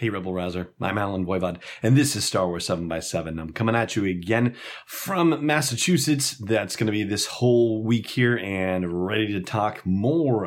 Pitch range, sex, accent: 95-120 Hz, male, American